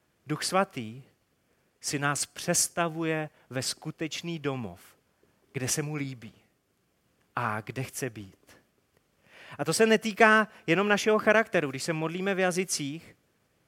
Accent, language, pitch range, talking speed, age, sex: native, Czech, 145-210 Hz, 125 wpm, 30-49, male